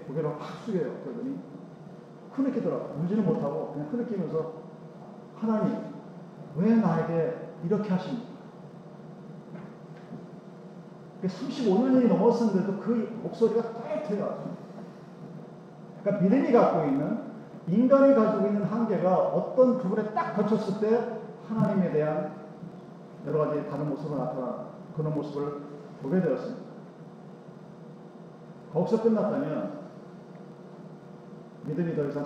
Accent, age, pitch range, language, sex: native, 40-59, 170-215 Hz, Korean, male